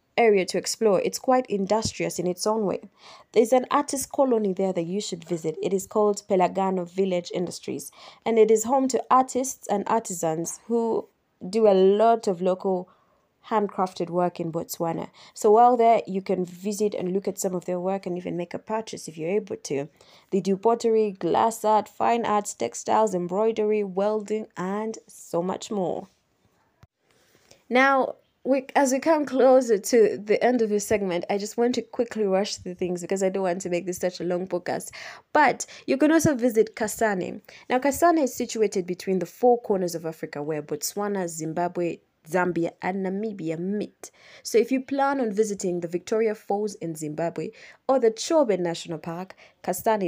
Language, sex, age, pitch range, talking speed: English, female, 20-39, 180-225 Hz, 180 wpm